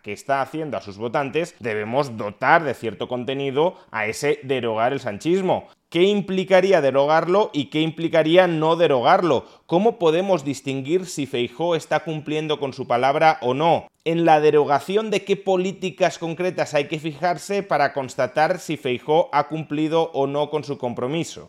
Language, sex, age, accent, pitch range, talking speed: Spanish, male, 30-49, Spanish, 120-165 Hz, 160 wpm